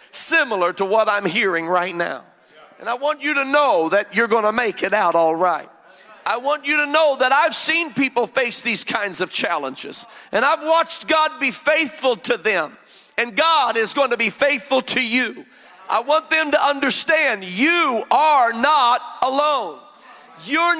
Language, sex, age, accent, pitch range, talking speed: English, male, 40-59, American, 215-295 Hz, 180 wpm